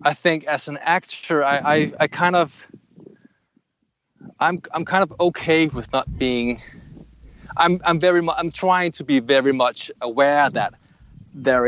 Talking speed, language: 160 wpm, English